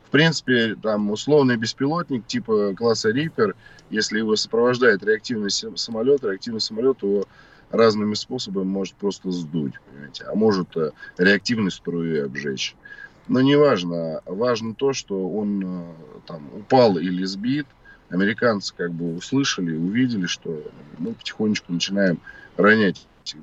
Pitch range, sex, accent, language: 90-130 Hz, male, native, Russian